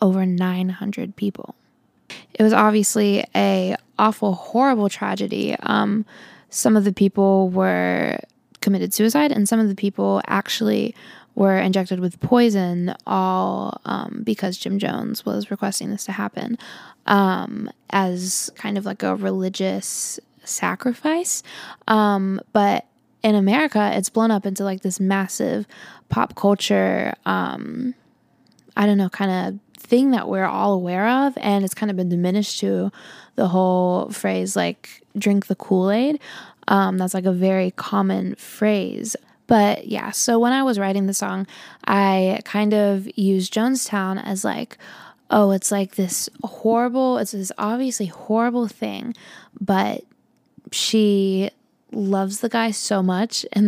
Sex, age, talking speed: female, 10-29, 140 wpm